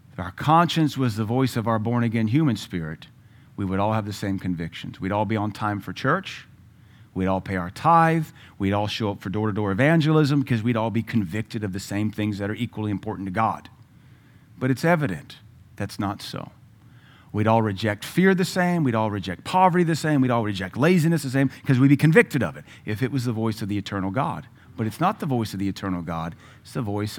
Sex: male